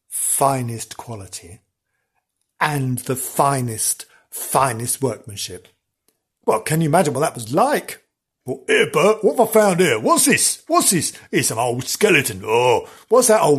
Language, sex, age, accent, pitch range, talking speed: English, male, 50-69, British, 125-180 Hz, 155 wpm